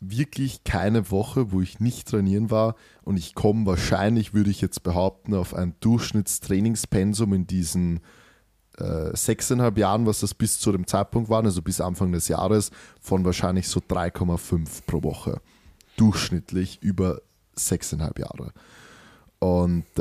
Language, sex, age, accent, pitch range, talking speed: German, male, 20-39, German, 90-105 Hz, 140 wpm